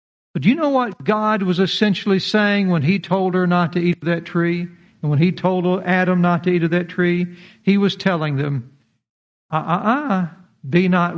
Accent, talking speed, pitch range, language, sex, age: American, 210 wpm, 145-205 Hz, English, male, 60-79